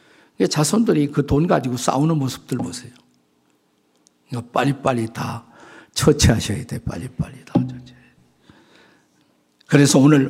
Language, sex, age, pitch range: Korean, male, 50-69, 125-185 Hz